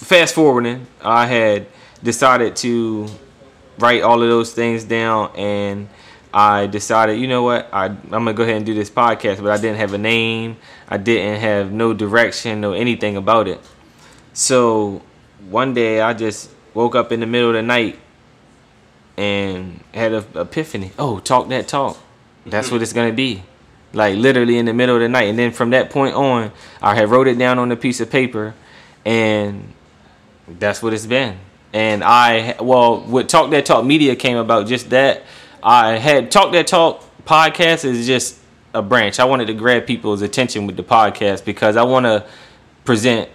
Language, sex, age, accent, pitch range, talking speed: English, male, 10-29, American, 105-125 Hz, 190 wpm